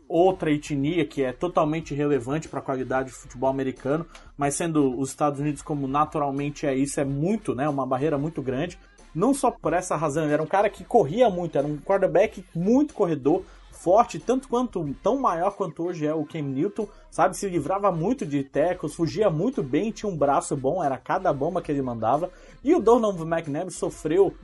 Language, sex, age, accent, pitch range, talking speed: Portuguese, male, 20-39, Brazilian, 150-215 Hz, 195 wpm